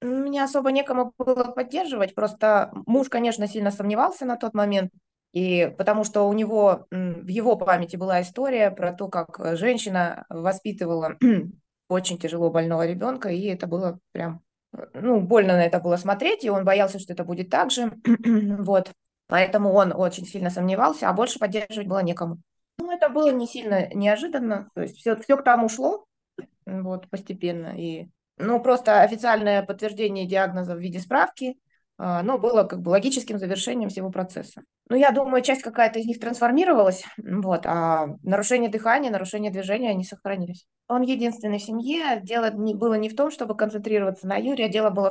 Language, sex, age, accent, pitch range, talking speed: Russian, female, 20-39, native, 185-235 Hz, 165 wpm